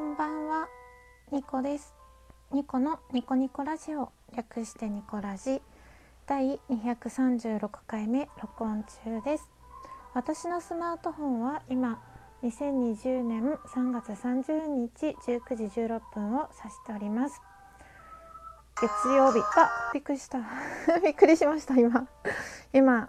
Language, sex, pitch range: Japanese, female, 215-280 Hz